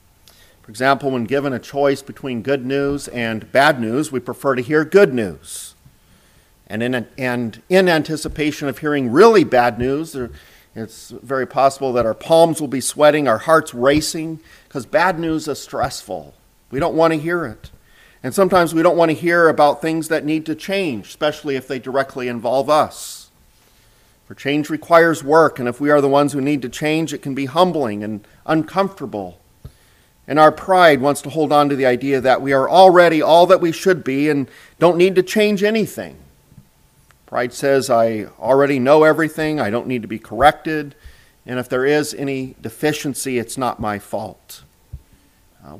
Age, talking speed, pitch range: 50-69, 185 wpm, 120-155 Hz